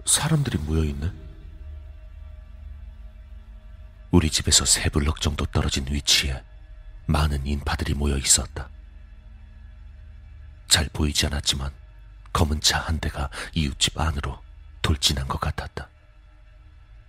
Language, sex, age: Korean, male, 40-59